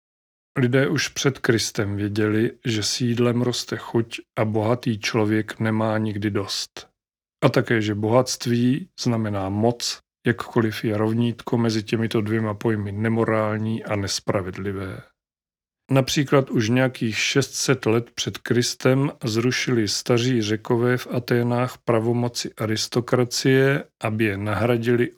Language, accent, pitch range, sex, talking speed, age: Czech, native, 105-125 Hz, male, 115 wpm, 40-59